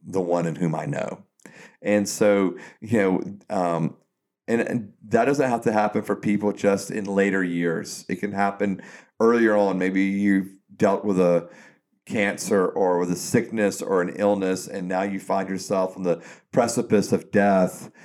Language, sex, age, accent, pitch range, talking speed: English, male, 40-59, American, 95-105 Hz, 175 wpm